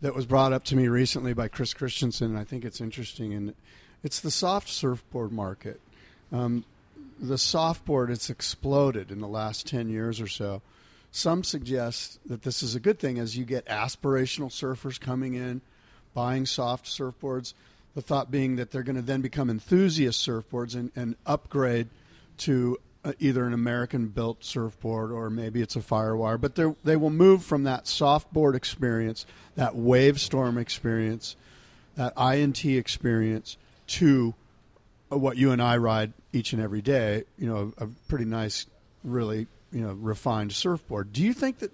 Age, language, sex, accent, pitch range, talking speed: 50-69, English, male, American, 115-140 Hz, 160 wpm